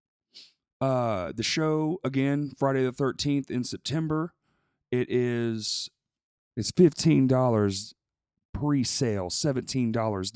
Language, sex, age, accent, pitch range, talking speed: English, male, 40-59, American, 110-130 Hz, 85 wpm